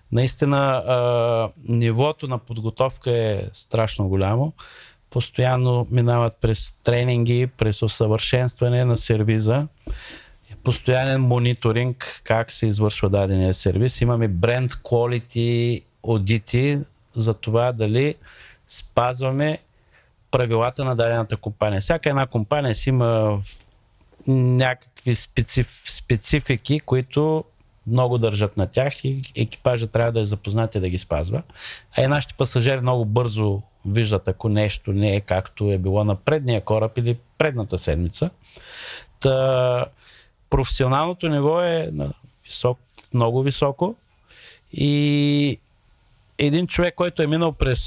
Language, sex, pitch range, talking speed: Bulgarian, male, 110-130 Hz, 120 wpm